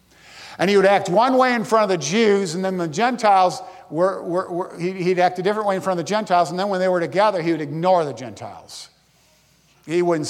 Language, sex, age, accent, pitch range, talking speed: English, male, 50-69, American, 155-195 Hz, 240 wpm